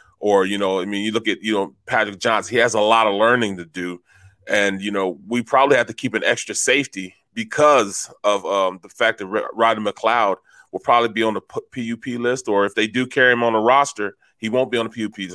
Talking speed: 240 wpm